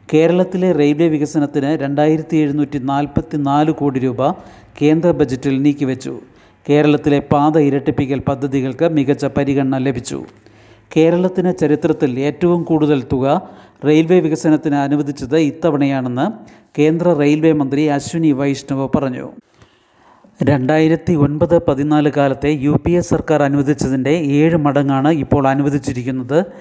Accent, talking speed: native, 95 wpm